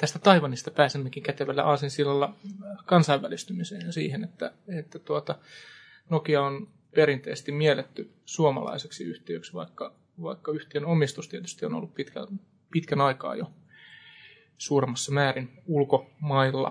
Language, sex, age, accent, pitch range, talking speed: Finnish, male, 20-39, native, 135-165 Hz, 110 wpm